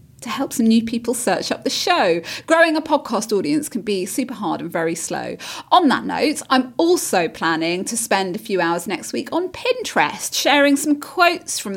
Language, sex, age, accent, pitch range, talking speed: English, female, 30-49, British, 230-310 Hz, 200 wpm